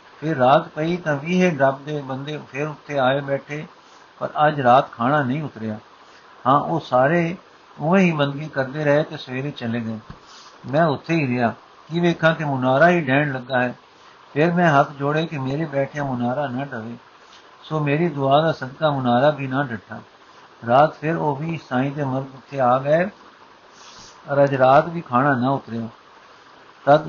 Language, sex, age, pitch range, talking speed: Punjabi, male, 60-79, 130-155 Hz, 175 wpm